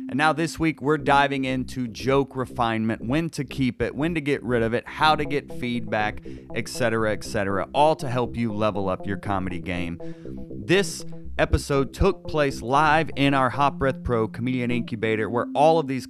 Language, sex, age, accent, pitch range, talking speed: English, male, 30-49, American, 105-155 Hz, 195 wpm